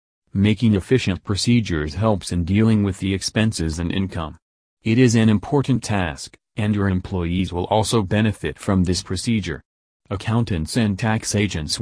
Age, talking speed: 40-59, 145 wpm